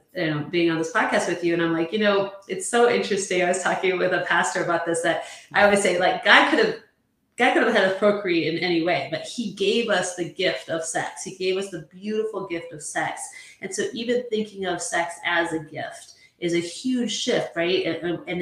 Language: English